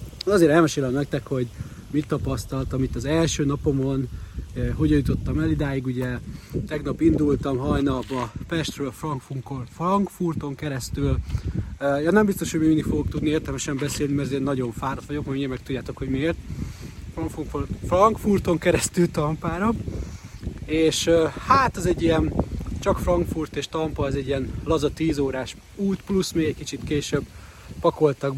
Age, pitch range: 30-49, 130-160 Hz